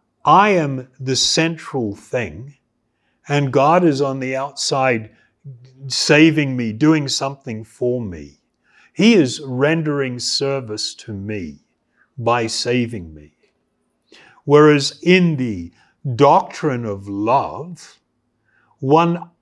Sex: male